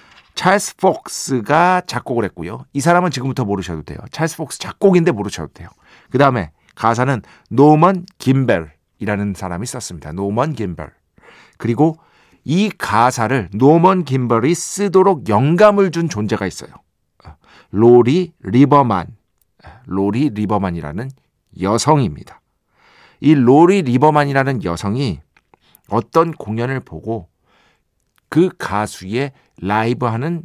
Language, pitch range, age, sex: Korean, 105-155 Hz, 50-69, male